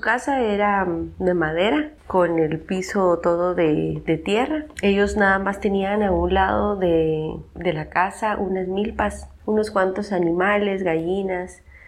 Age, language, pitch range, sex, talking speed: 30-49, Spanish, 170-205 Hz, female, 140 wpm